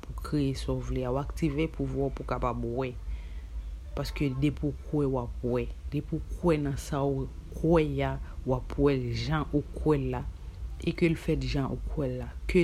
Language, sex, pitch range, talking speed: French, female, 115-140 Hz, 175 wpm